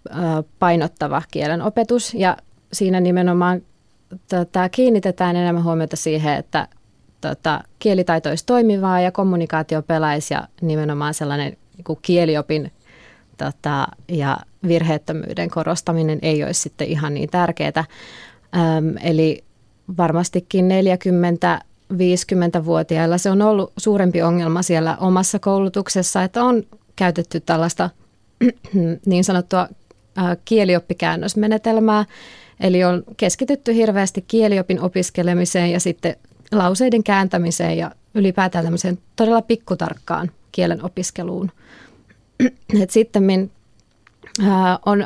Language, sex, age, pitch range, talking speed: Finnish, female, 20-39, 165-195 Hz, 95 wpm